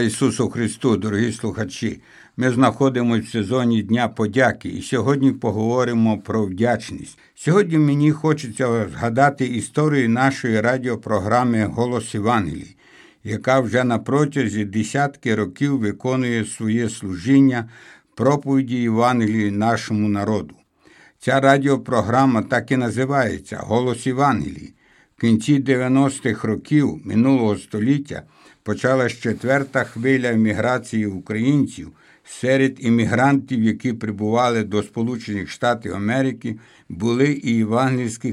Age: 60-79